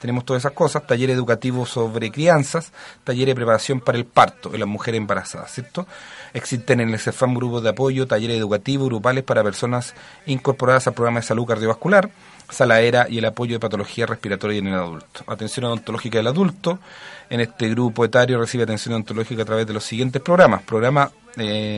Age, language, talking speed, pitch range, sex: 30-49, Spanish, 185 wpm, 115-140 Hz, male